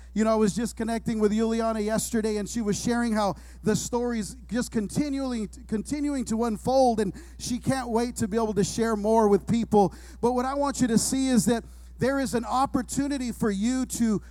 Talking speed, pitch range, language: 205 wpm, 215-250 Hz, English